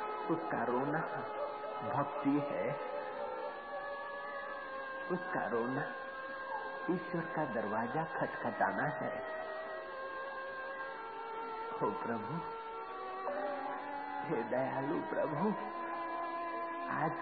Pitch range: 205-275 Hz